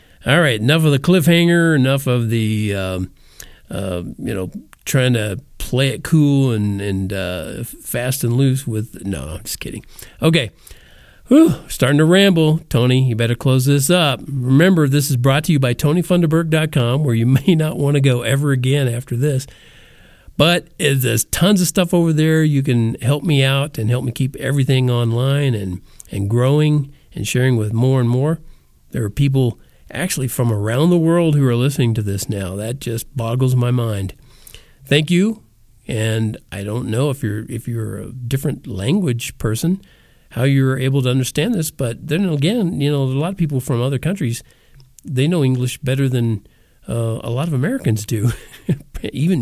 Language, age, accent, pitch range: English, 50-69, American, 115-150 Hz